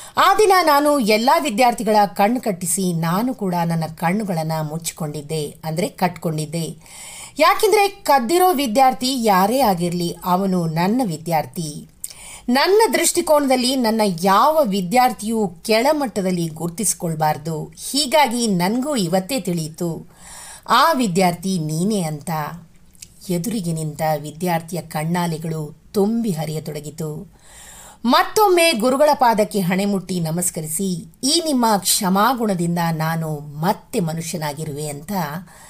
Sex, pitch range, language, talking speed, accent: female, 165-250 Hz, English, 85 wpm, Indian